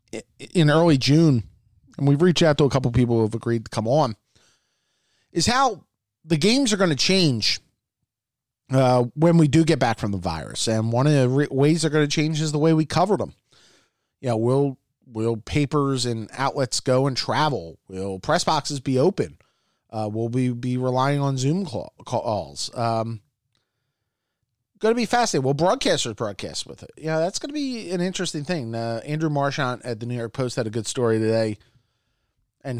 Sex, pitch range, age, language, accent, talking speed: male, 115-155 Hz, 30-49, English, American, 190 wpm